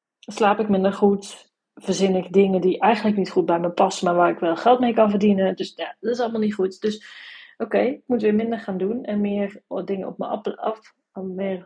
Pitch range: 190-245 Hz